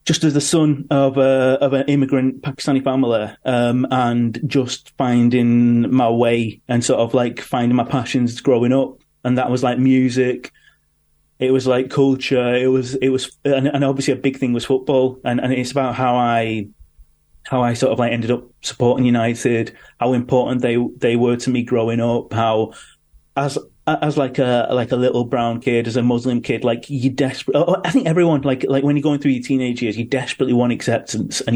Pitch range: 120-135 Hz